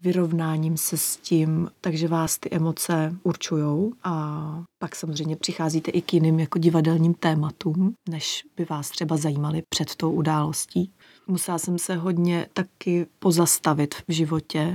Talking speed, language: 140 wpm, Czech